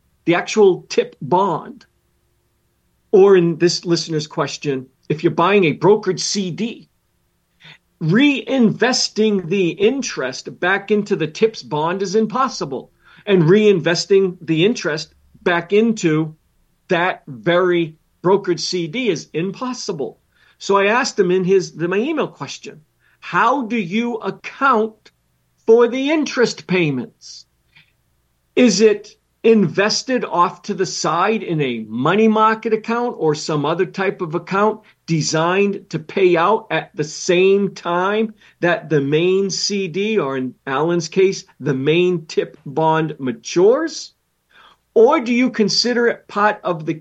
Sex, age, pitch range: male, 50-69, 160-215 Hz